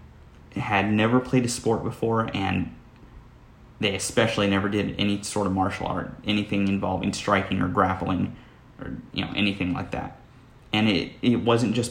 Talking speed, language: 160 wpm, English